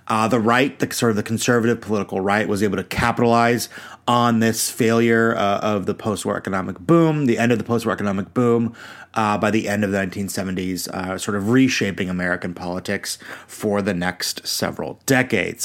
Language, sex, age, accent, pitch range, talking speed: English, male, 30-49, American, 100-125 Hz, 185 wpm